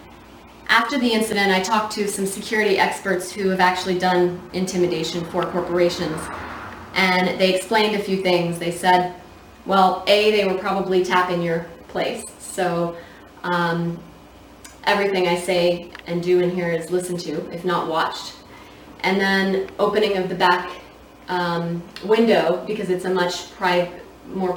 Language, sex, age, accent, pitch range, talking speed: English, female, 20-39, American, 175-195 Hz, 150 wpm